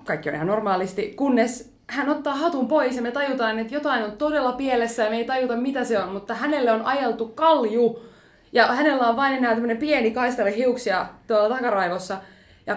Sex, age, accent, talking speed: female, 20-39, native, 190 wpm